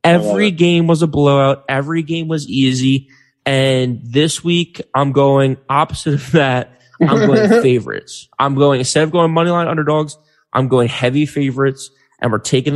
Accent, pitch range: American, 120-140 Hz